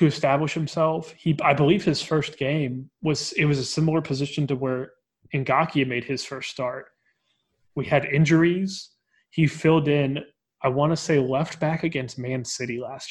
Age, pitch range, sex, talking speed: 20-39, 125-150 Hz, male, 170 wpm